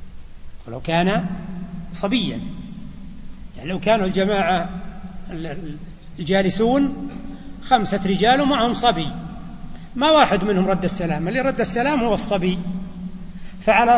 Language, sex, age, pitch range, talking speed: Arabic, male, 60-79, 175-205 Hz, 100 wpm